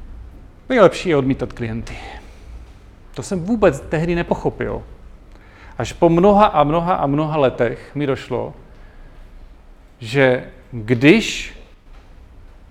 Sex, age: male, 40-59